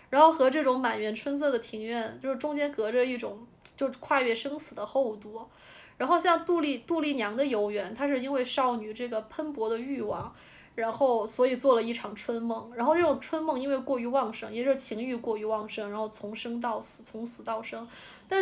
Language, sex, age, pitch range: Chinese, female, 20-39, 225-285 Hz